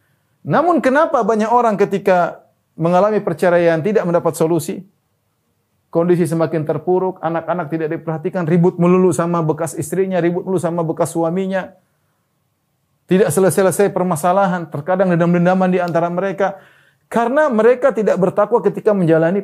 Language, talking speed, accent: Indonesian, 125 wpm, native